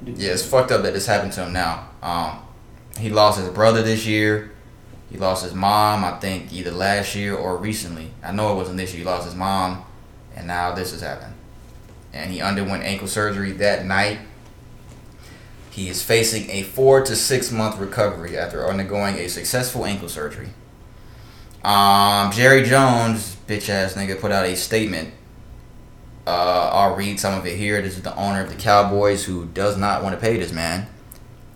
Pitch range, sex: 90-110 Hz, male